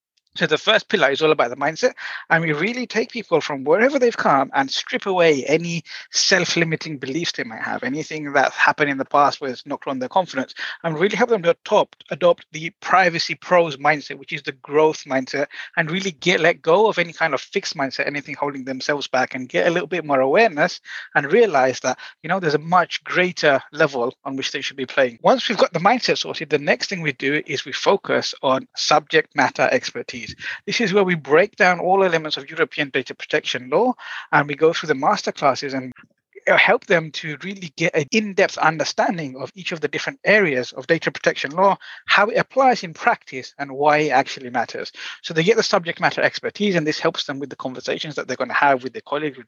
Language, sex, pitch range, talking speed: English, male, 140-190 Hz, 220 wpm